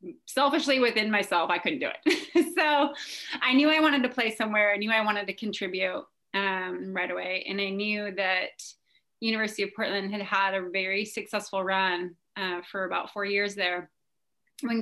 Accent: American